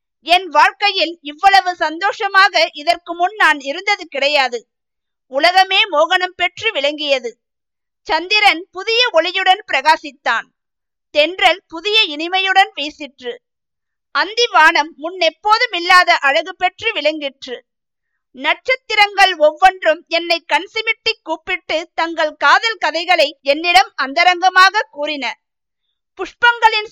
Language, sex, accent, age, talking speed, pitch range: Tamil, female, native, 50-69, 85 wpm, 305-395 Hz